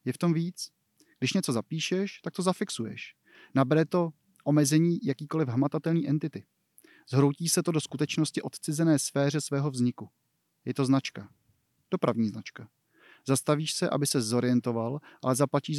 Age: 30-49